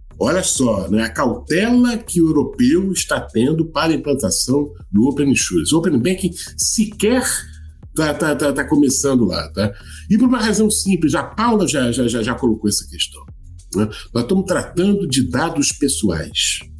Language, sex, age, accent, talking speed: Portuguese, male, 60-79, Brazilian, 170 wpm